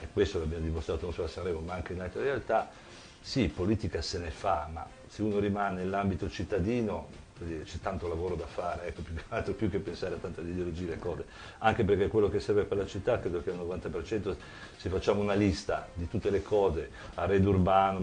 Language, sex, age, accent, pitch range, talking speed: Italian, male, 50-69, native, 85-100 Hz, 210 wpm